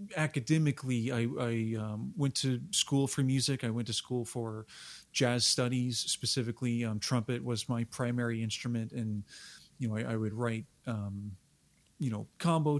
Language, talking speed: English, 160 wpm